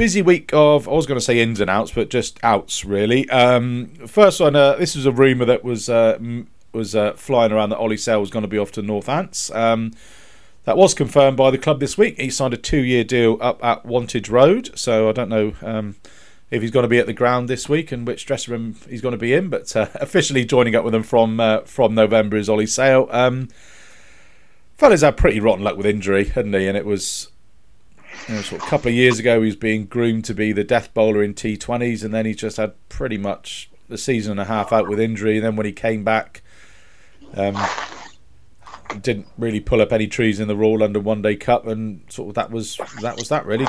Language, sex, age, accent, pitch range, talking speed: English, male, 40-59, British, 110-130 Hz, 240 wpm